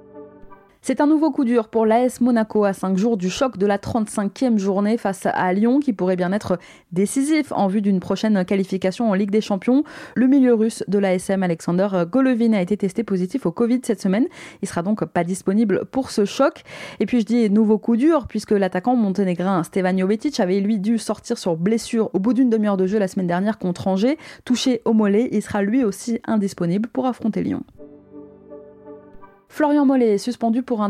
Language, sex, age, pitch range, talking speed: French, female, 20-39, 185-245 Hz, 200 wpm